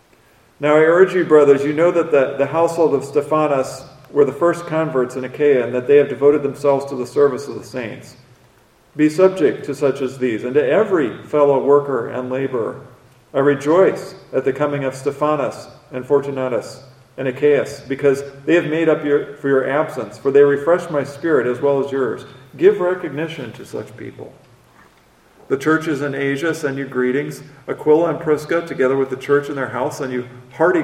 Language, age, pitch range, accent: English, 40-59, 130-150 Hz, American